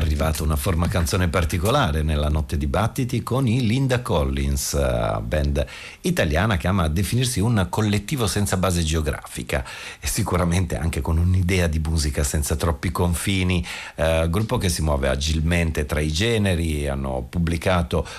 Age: 50-69